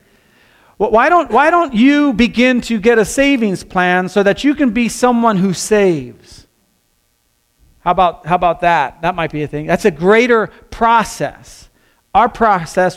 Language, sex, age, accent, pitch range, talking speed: English, male, 40-59, American, 145-200 Hz, 160 wpm